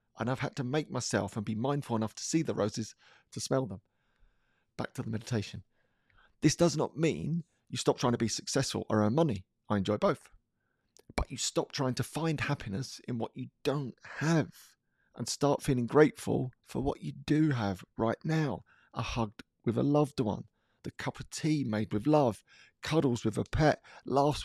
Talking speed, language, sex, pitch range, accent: 190 wpm, English, male, 110-150 Hz, British